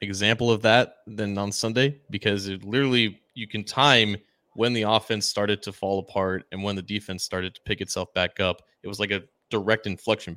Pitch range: 95-115 Hz